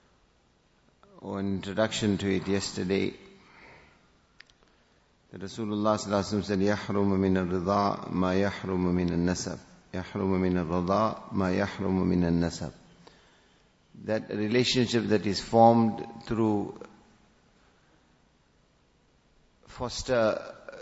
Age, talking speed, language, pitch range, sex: 50-69, 100 wpm, English, 95-110 Hz, male